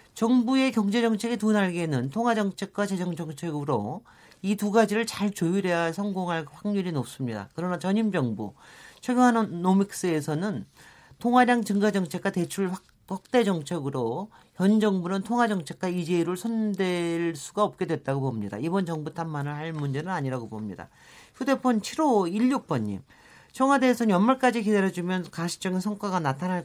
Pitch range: 155-220 Hz